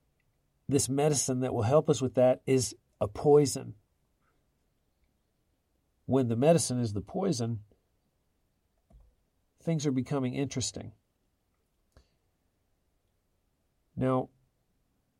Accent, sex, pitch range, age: American, male, 100-130 Hz, 50-69